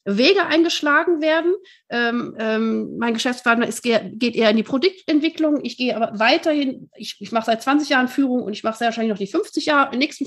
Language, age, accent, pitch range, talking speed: German, 40-59, German, 225-305 Hz, 200 wpm